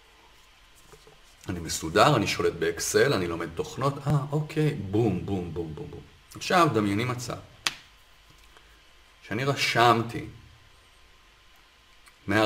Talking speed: 100 wpm